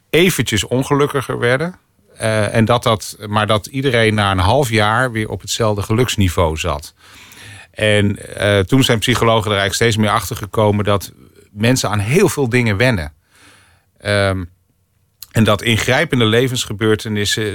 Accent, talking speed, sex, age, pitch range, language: Dutch, 145 wpm, male, 40-59, 90-110 Hz, Dutch